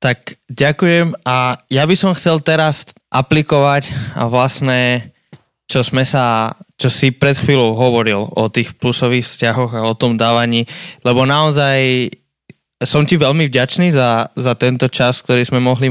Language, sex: Slovak, male